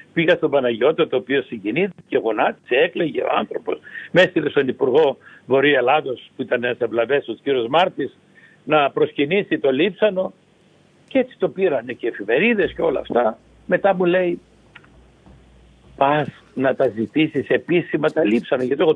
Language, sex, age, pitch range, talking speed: Greek, male, 60-79, 140-225 Hz, 150 wpm